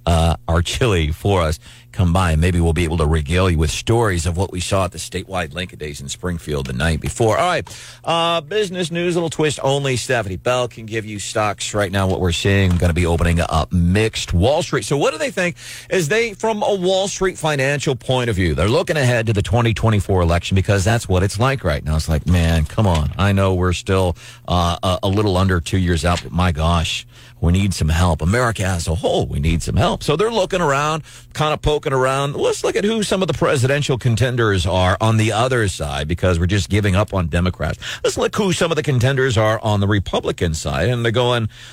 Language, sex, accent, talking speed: English, male, American, 235 wpm